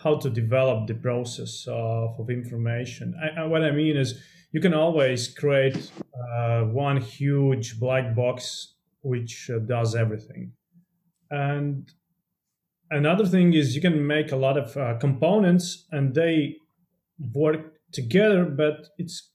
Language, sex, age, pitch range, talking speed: English, male, 30-49, 125-160 Hz, 140 wpm